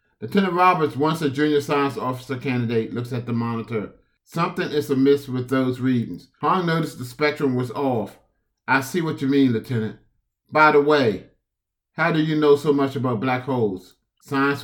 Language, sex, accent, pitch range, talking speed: English, male, American, 120-145 Hz, 175 wpm